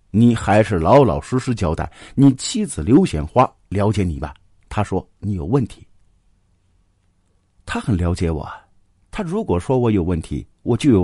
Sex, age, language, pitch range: male, 50-69, Chinese, 85-120 Hz